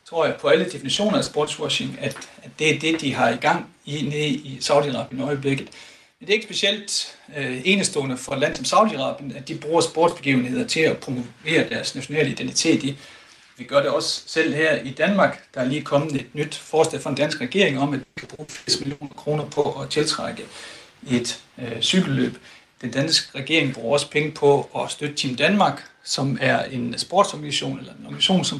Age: 60-79